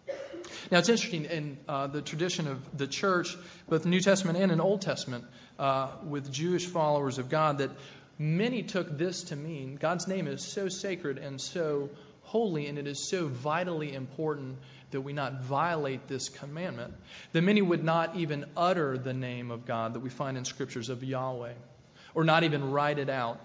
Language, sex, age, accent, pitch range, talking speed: English, male, 40-59, American, 135-170 Hz, 185 wpm